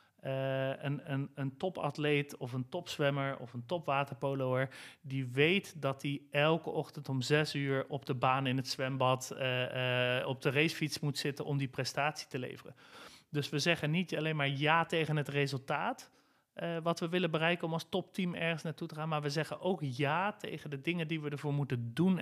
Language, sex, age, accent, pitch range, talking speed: Dutch, male, 40-59, Dutch, 135-165 Hz, 195 wpm